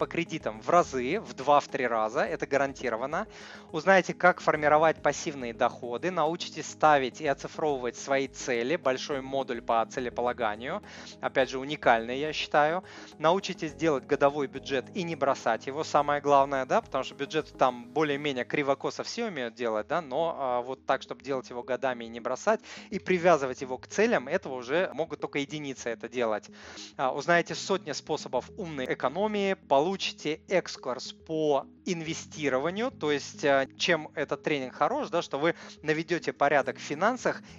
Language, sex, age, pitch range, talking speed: Russian, male, 20-39, 130-165 Hz, 155 wpm